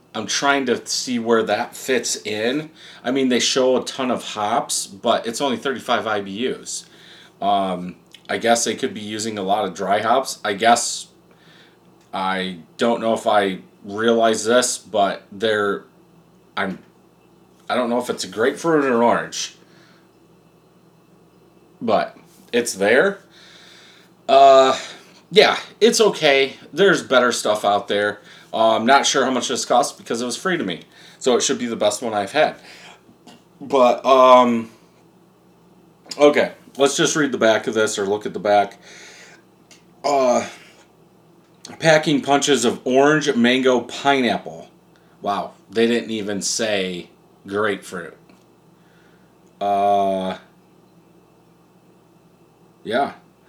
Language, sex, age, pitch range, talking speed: English, male, 30-49, 115-175 Hz, 135 wpm